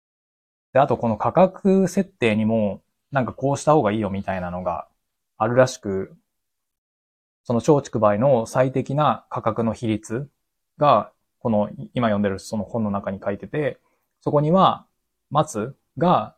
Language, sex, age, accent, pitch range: Japanese, male, 20-39, native, 100-135 Hz